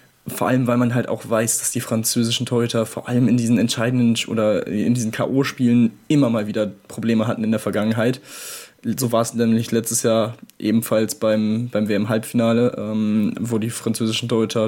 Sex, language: male, German